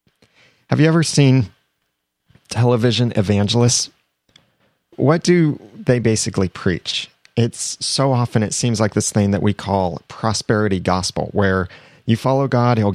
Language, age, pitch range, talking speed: English, 30-49, 100-135 Hz, 135 wpm